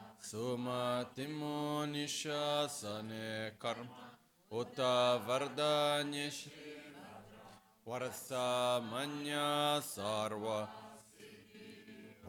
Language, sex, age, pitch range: Italian, male, 40-59, 110-130 Hz